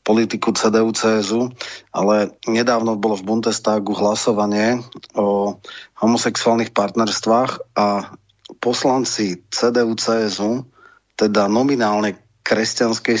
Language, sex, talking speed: Slovak, male, 75 wpm